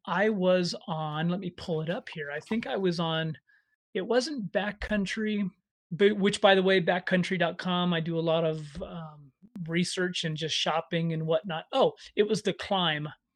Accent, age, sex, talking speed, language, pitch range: American, 30-49, male, 175 wpm, English, 165-210 Hz